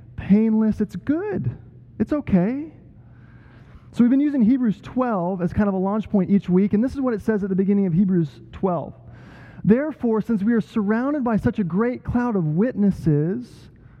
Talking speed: 185 wpm